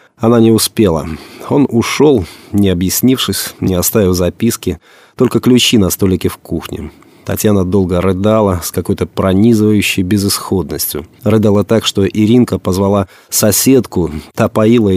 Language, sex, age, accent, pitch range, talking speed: Russian, male, 30-49, native, 90-115 Hz, 120 wpm